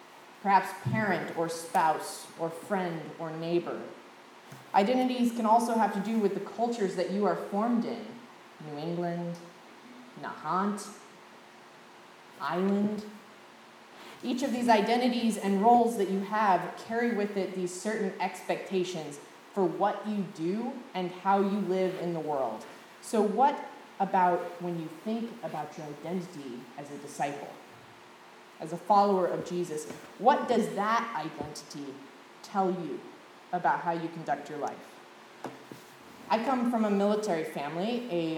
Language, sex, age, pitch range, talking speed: English, female, 20-39, 170-215 Hz, 140 wpm